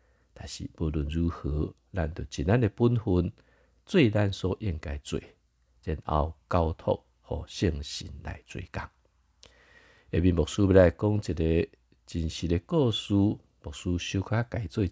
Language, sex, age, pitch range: Chinese, male, 50-69, 75-95 Hz